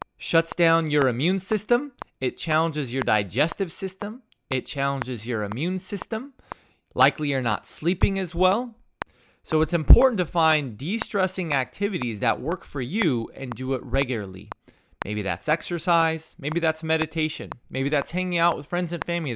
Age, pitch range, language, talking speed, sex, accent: 30-49, 125-185 Hz, English, 155 wpm, male, American